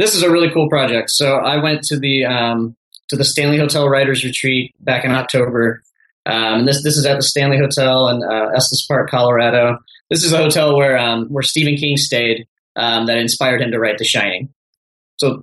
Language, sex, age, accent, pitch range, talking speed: English, male, 20-39, American, 120-145 Hz, 210 wpm